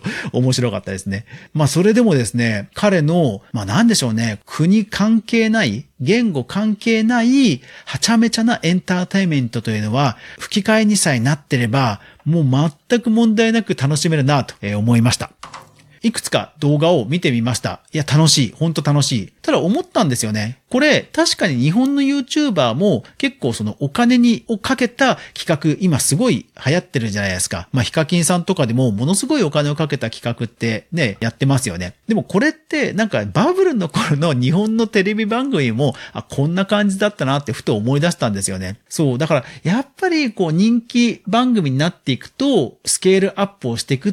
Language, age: Japanese, 40-59